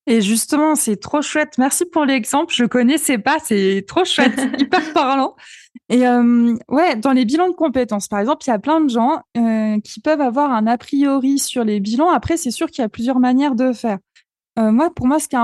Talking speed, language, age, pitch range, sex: 235 wpm, French, 20-39, 230-290 Hz, female